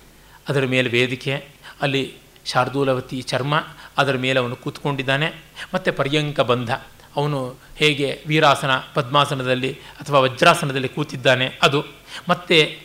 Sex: male